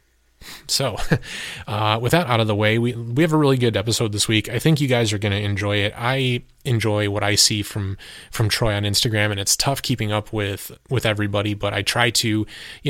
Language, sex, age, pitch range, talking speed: English, male, 20-39, 105-125 Hz, 230 wpm